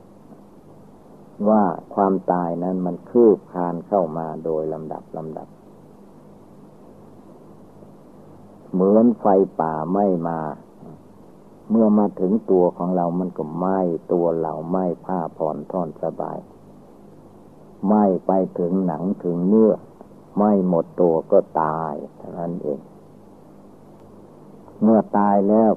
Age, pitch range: 60-79, 85-95 Hz